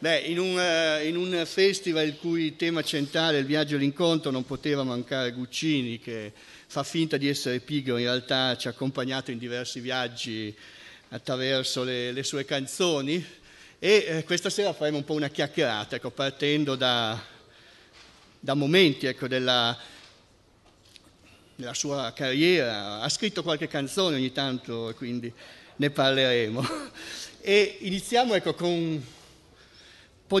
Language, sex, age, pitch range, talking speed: Italian, male, 50-69, 130-165 Hz, 140 wpm